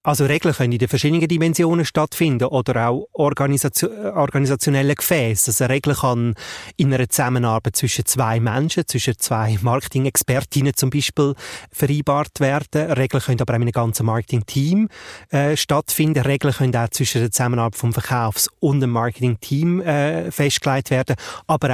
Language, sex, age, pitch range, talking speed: German, male, 30-49, 120-145 Hz, 150 wpm